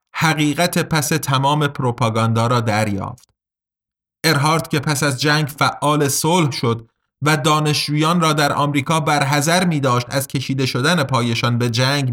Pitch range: 135-165 Hz